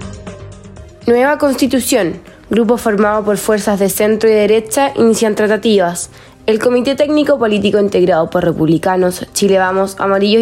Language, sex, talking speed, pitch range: Spanish, female, 115 wpm, 195-250 Hz